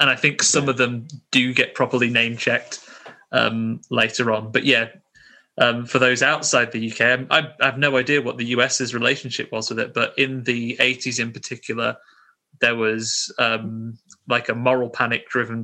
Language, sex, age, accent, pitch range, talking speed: English, male, 20-39, British, 115-125 Hz, 185 wpm